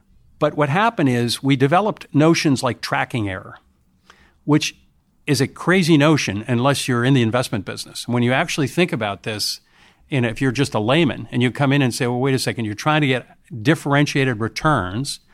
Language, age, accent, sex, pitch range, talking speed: English, 50-69, American, male, 110-140 Hz, 190 wpm